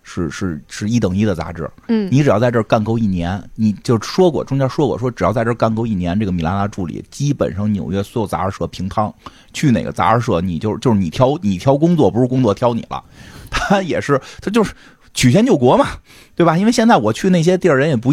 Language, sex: Chinese, male